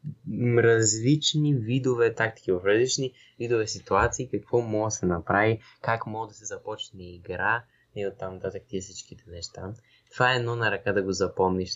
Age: 20-39